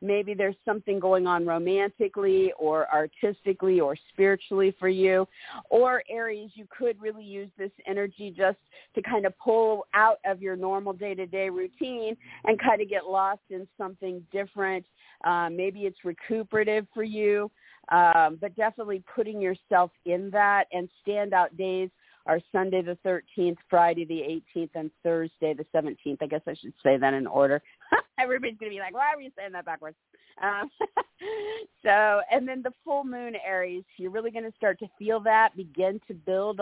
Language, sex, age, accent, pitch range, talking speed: English, female, 50-69, American, 175-210 Hz, 170 wpm